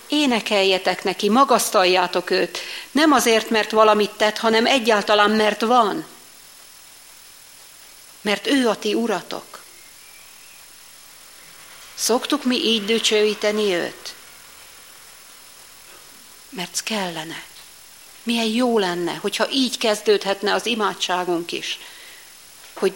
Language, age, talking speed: Hungarian, 50-69, 90 wpm